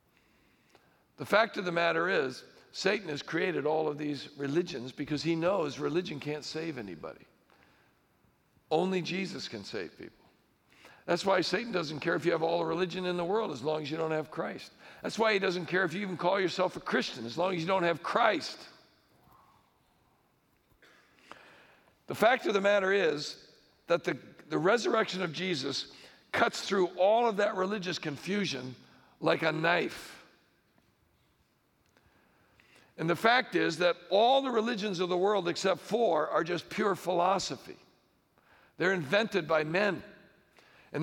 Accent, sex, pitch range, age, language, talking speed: American, male, 170-205 Hz, 60-79, English, 160 wpm